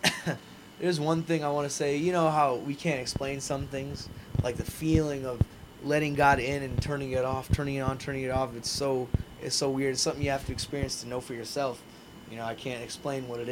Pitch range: 125-155 Hz